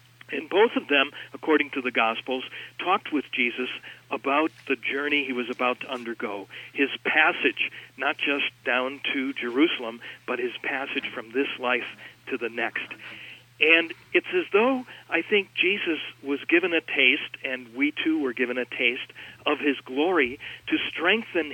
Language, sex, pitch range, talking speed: English, male, 125-150 Hz, 160 wpm